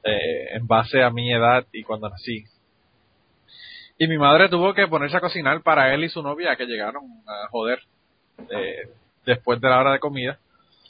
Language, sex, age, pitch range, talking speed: Spanish, male, 30-49, 115-140 Hz, 180 wpm